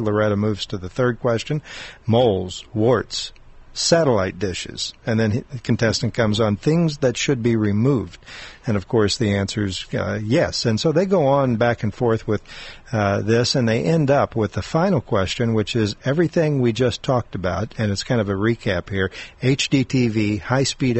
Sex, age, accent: male, 50-69, American